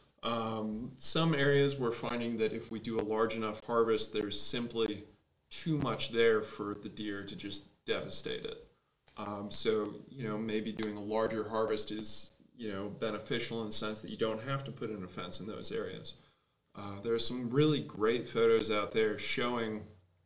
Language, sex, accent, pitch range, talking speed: English, male, American, 105-125 Hz, 185 wpm